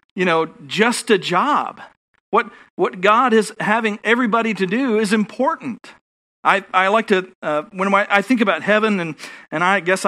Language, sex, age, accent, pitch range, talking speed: English, male, 40-59, American, 185-235 Hz, 180 wpm